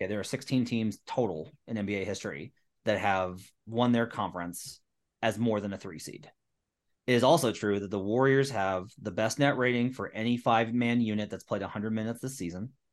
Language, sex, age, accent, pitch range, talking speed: English, male, 30-49, American, 105-130 Hz, 200 wpm